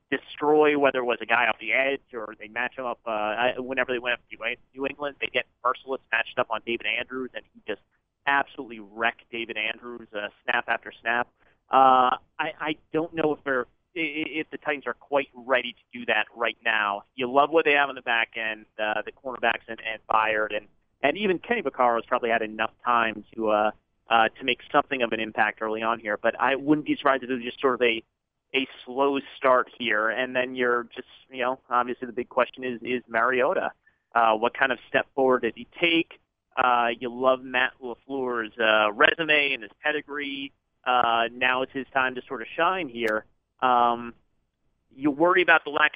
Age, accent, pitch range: 40-59, American, 115-135 Hz